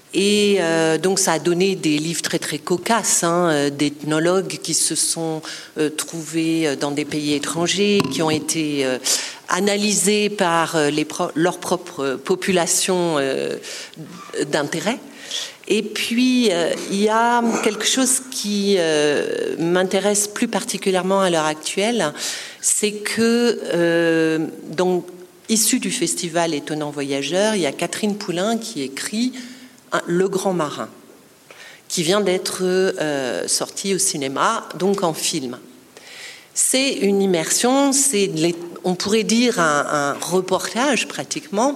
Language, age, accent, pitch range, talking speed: French, 50-69, French, 160-210 Hz, 130 wpm